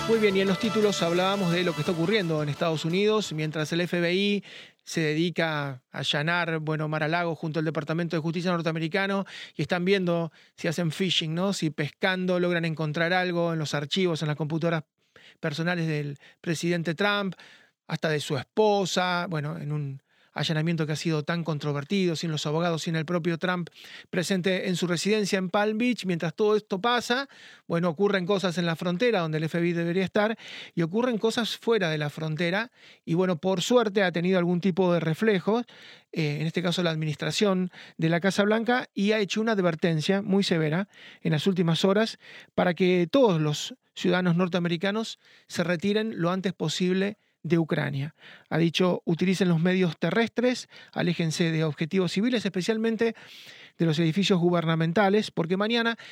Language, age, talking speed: Spanish, 30-49, 175 wpm